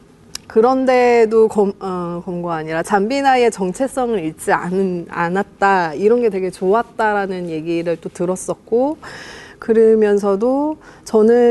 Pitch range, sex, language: 185-235 Hz, female, Korean